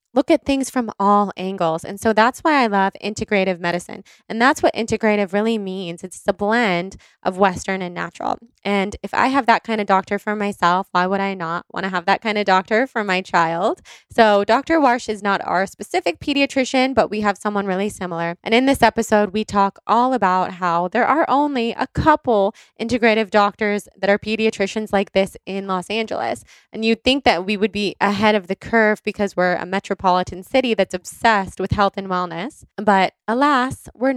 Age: 20-39